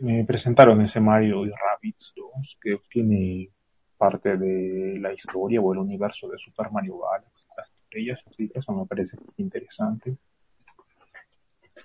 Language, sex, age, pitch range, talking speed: Spanish, male, 30-49, 95-120 Hz, 145 wpm